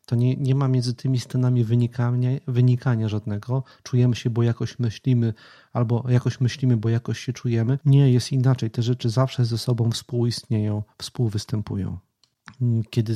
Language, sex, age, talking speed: Polish, male, 40-59, 150 wpm